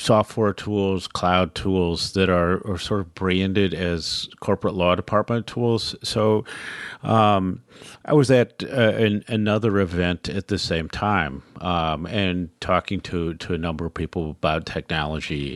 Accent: American